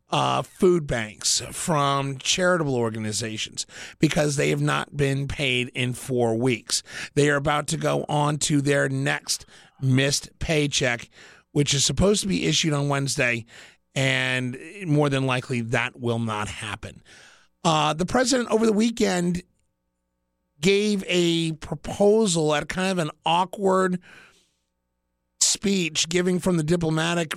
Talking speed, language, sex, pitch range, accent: 135 wpm, English, male, 135-170 Hz, American